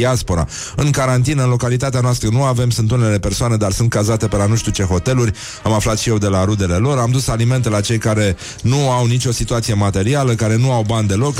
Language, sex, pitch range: Romanian, male, 105-130 Hz